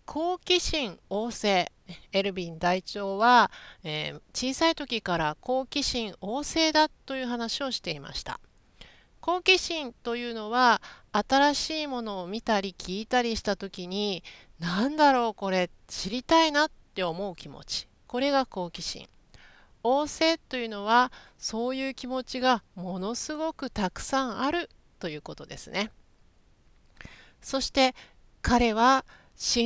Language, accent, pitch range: Japanese, native, 195-280 Hz